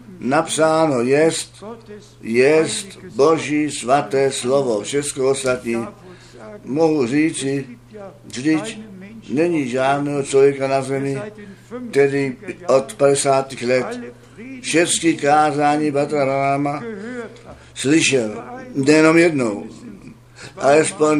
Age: 60-79